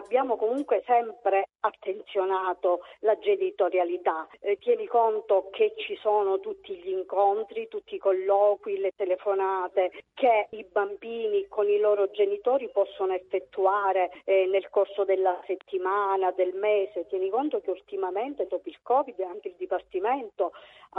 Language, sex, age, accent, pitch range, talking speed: Italian, female, 40-59, native, 185-235 Hz, 135 wpm